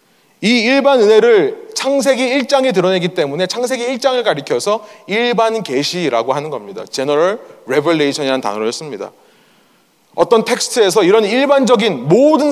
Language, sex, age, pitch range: Korean, male, 30-49, 195-275 Hz